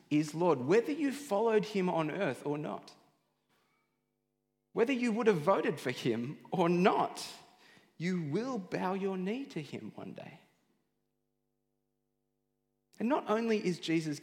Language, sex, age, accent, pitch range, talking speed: English, male, 30-49, Australian, 145-200 Hz, 140 wpm